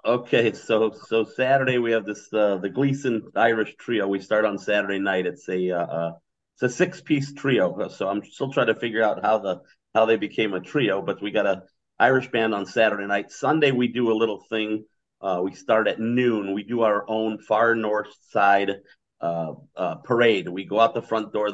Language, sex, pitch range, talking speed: English, male, 95-110 Hz, 215 wpm